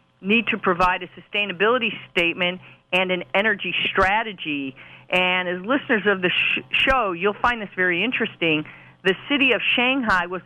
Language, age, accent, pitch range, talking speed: English, 50-69, American, 180-220 Hz, 150 wpm